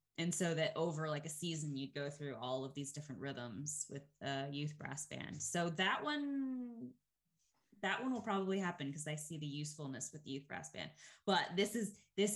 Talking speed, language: 205 wpm, English